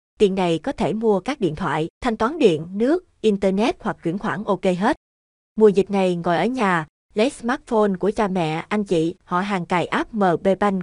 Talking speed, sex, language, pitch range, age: 200 wpm, female, Vietnamese, 175-215 Hz, 20-39